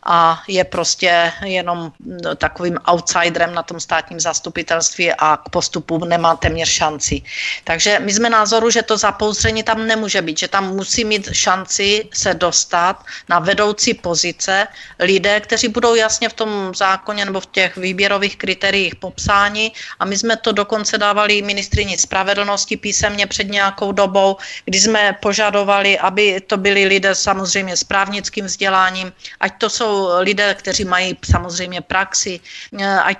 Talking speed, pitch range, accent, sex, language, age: 145 wpm, 180-210 Hz, native, female, Czech, 40-59